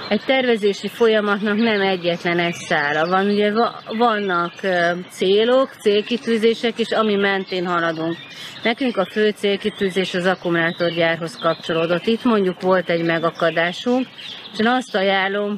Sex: female